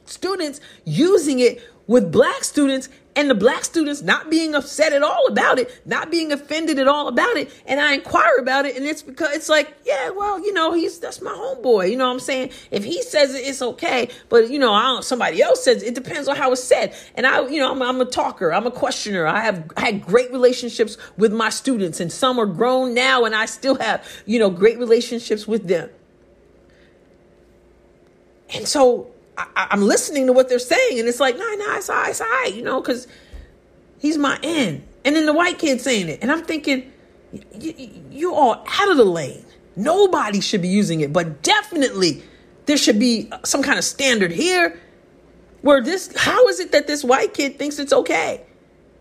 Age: 40-59